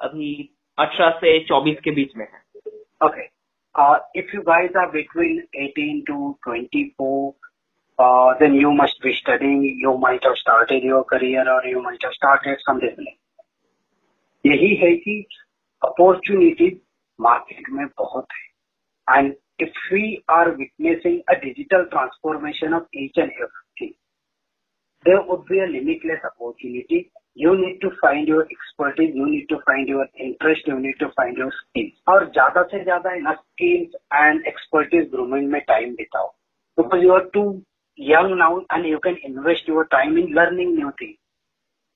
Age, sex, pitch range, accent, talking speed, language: 30-49, male, 140-195 Hz, native, 110 wpm, Bengali